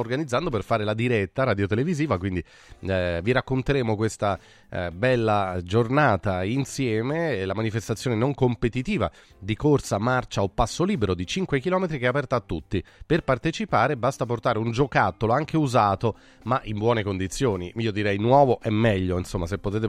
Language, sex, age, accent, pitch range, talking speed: Italian, male, 30-49, native, 105-135 Hz, 160 wpm